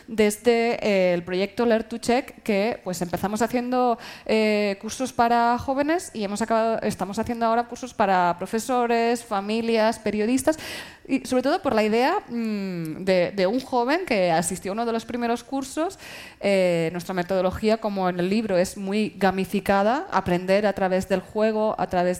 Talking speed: 160 wpm